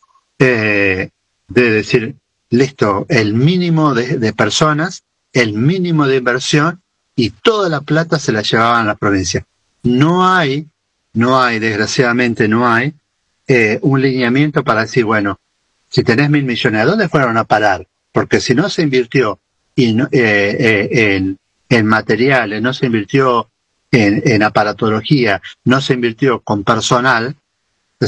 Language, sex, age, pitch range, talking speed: Spanish, male, 40-59, 110-160 Hz, 145 wpm